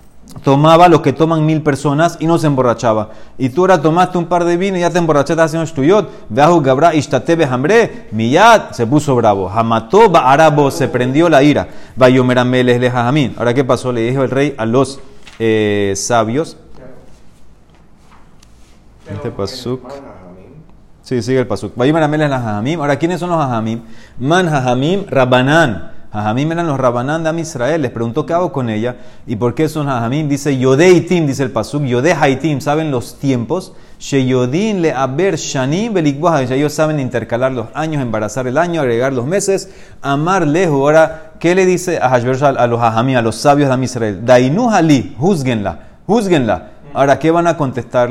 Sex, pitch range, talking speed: male, 125-165 Hz, 155 wpm